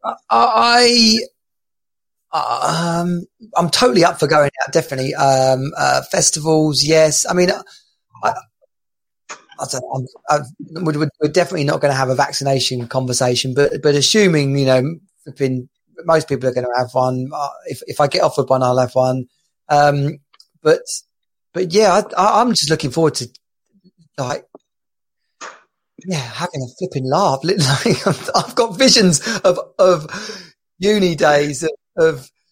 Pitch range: 140-180 Hz